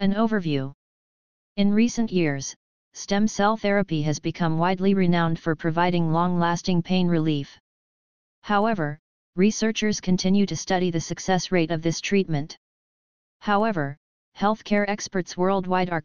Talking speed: 125 wpm